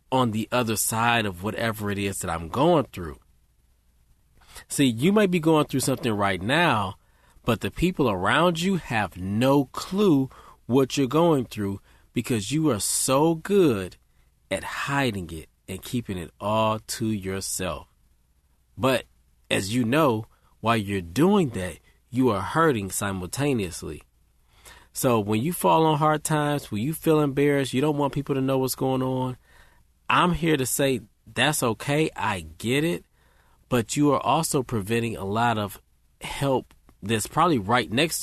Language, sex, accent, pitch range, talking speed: English, male, American, 95-140 Hz, 160 wpm